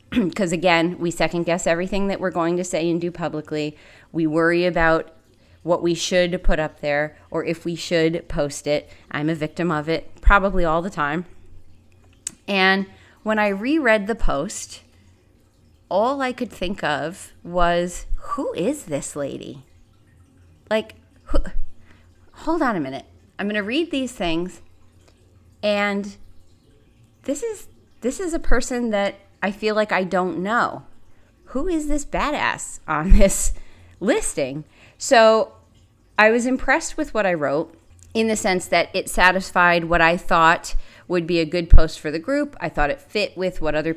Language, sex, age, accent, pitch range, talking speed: English, female, 30-49, American, 150-190 Hz, 160 wpm